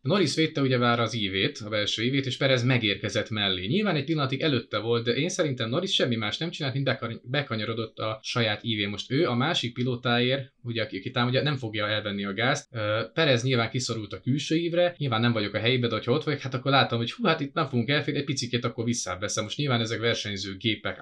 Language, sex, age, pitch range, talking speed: Hungarian, male, 20-39, 110-135 Hz, 215 wpm